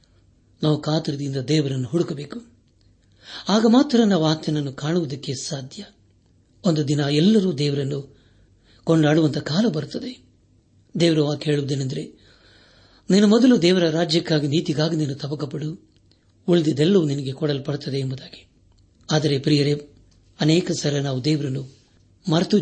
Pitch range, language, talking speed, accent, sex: 110-165 Hz, Kannada, 95 wpm, native, male